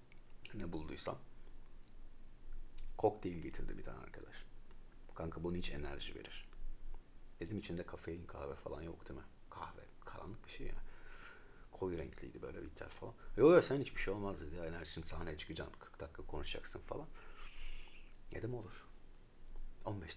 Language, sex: Turkish, male